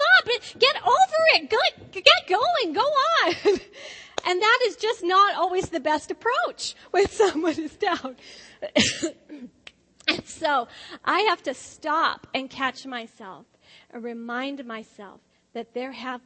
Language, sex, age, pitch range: English, female, 40-59, 225-280 Hz